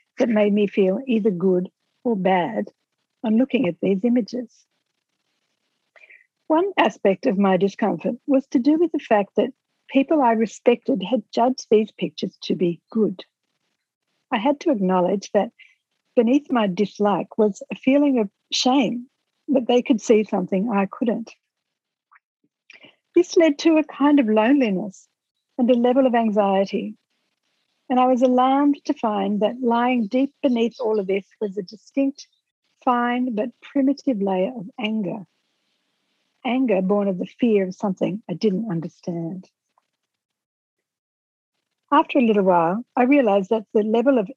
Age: 60-79